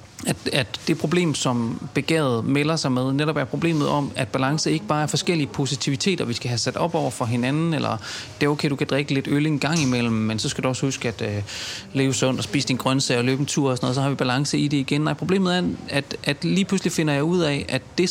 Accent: native